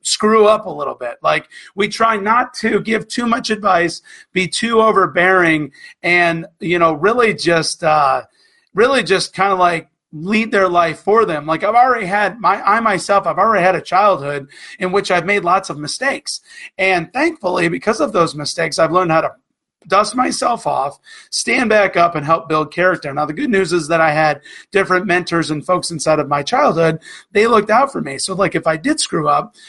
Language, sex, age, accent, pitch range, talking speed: English, male, 30-49, American, 160-200 Hz, 200 wpm